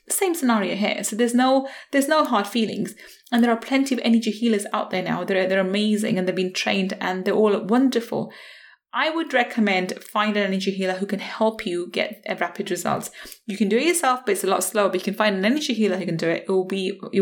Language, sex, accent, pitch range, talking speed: English, female, British, 190-235 Hz, 245 wpm